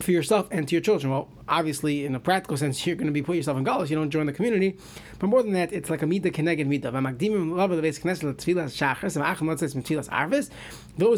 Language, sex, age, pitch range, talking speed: English, male, 30-49, 150-190 Hz, 205 wpm